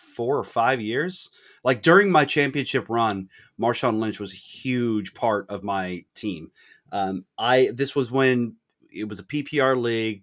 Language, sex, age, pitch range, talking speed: English, male, 30-49, 105-135 Hz, 165 wpm